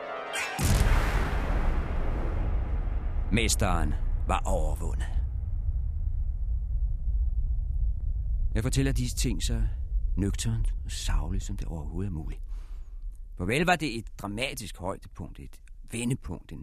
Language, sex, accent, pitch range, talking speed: Danish, male, native, 80-125 Hz, 90 wpm